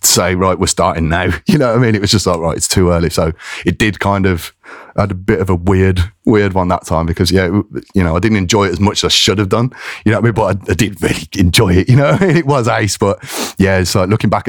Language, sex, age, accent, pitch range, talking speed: English, male, 30-49, British, 85-110 Hz, 315 wpm